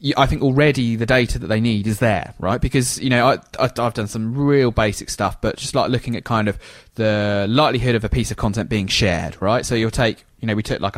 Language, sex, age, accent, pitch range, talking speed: English, male, 20-39, British, 100-125 Hz, 245 wpm